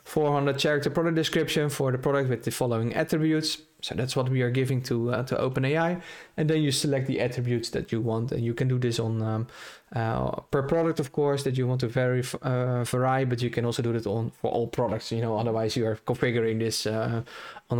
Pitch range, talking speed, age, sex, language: 120-150 Hz, 235 wpm, 20-39, male, English